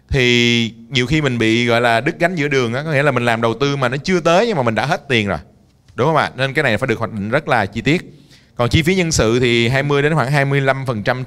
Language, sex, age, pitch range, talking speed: Vietnamese, male, 20-39, 110-150 Hz, 290 wpm